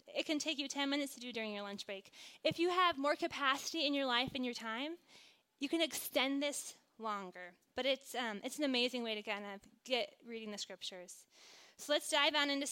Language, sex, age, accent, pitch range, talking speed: English, female, 20-39, American, 250-320 Hz, 220 wpm